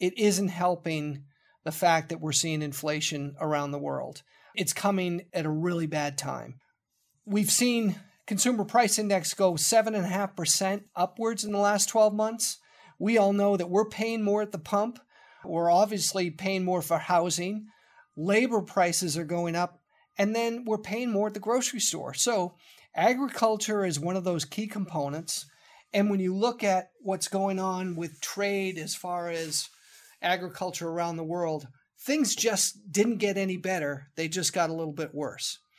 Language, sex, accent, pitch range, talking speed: English, male, American, 165-210 Hz, 170 wpm